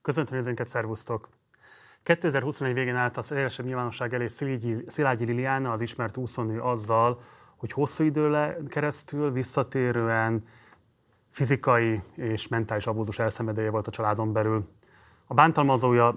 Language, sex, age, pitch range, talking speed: Hungarian, male, 30-49, 110-130 Hz, 120 wpm